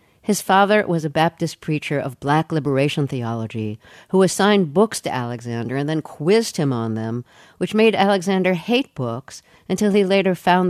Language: English